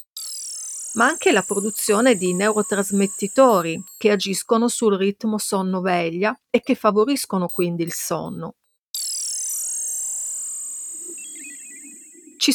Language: Italian